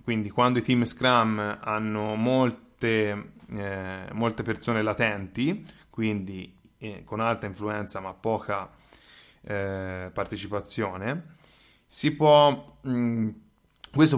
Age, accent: 20-39, native